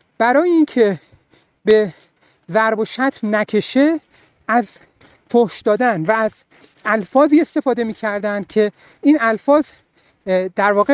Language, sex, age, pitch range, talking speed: Persian, male, 30-49, 195-275 Hz, 110 wpm